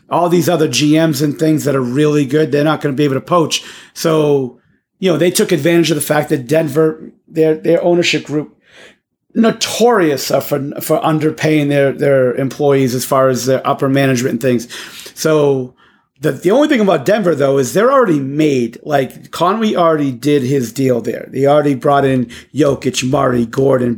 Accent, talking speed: American, 185 wpm